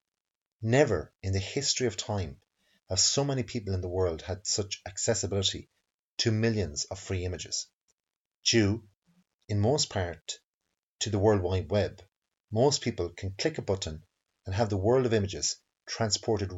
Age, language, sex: 30-49, English, male